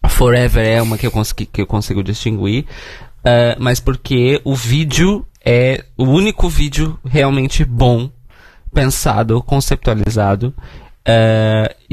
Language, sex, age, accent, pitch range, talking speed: Portuguese, male, 20-39, Brazilian, 105-130 Hz, 120 wpm